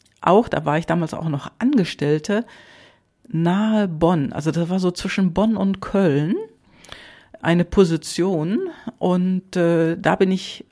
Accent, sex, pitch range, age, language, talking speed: German, female, 140-195 Hz, 50-69, German, 140 wpm